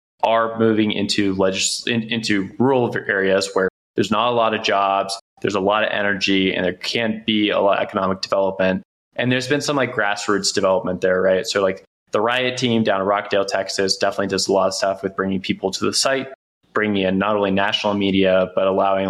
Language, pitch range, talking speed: English, 95-115 Hz, 210 wpm